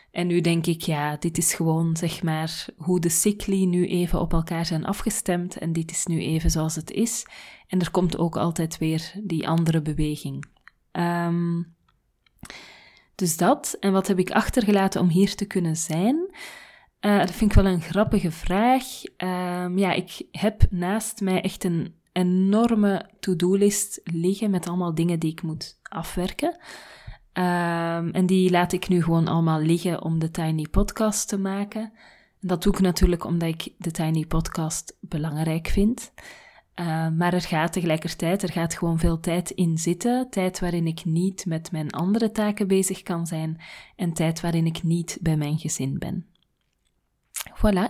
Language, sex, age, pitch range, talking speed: Dutch, female, 20-39, 165-195 Hz, 165 wpm